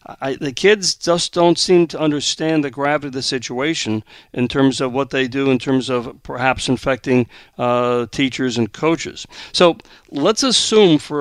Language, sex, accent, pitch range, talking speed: English, male, American, 130-170 Hz, 170 wpm